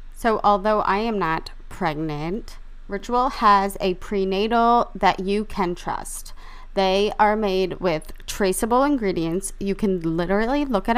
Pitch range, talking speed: 175-215 Hz, 135 wpm